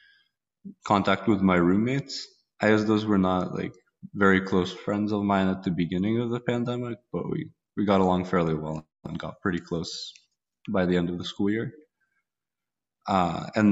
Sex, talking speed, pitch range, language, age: male, 175 wpm, 90-105 Hz, English, 20-39